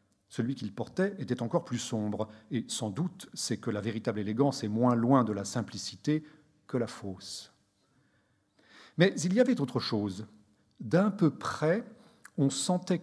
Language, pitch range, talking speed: French, 115-165 Hz, 160 wpm